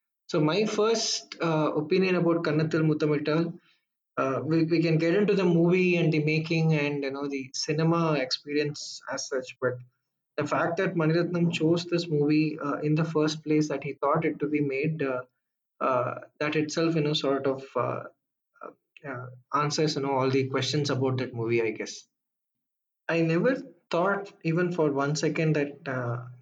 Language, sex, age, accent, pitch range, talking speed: English, male, 20-39, Indian, 130-160 Hz, 175 wpm